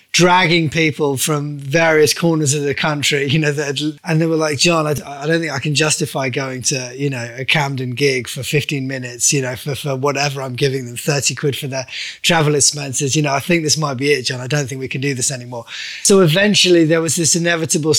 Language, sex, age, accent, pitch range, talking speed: English, male, 20-39, British, 135-155 Hz, 235 wpm